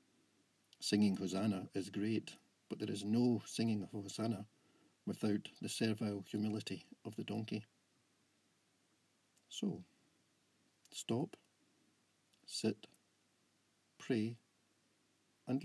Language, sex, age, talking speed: English, male, 60-79, 90 wpm